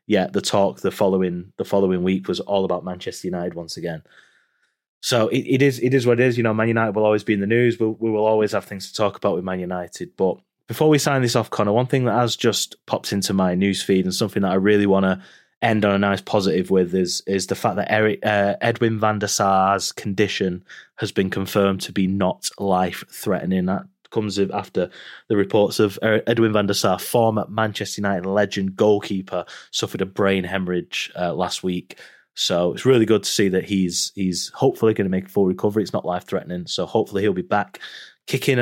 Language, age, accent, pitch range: English, 20-39, British, 95-120 Hz